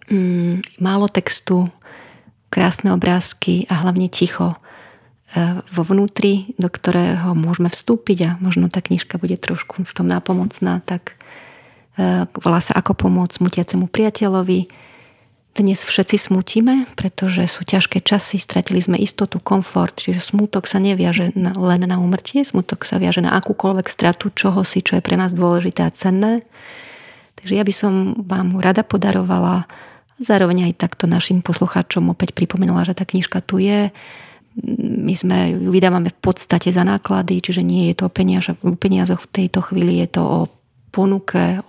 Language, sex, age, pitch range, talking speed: Slovak, female, 30-49, 175-195 Hz, 145 wpm